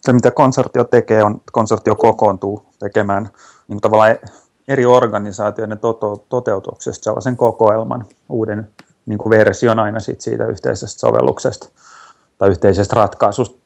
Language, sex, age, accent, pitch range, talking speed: Finnish, male, 30-49, native, 105-120 Hz, 115 wpm